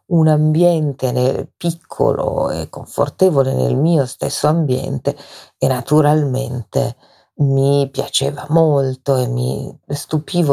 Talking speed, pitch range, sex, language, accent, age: 95 wpm, 130-150 Hz, female, Italian, native, 50-69